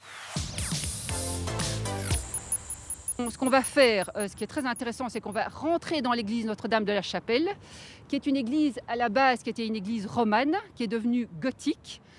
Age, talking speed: 40-59, 170 wpm